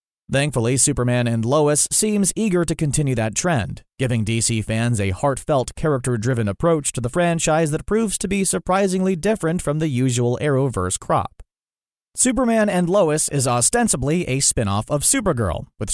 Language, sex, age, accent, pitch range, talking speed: English, male, 30-49, American, 120-160 Hz, 160 wpm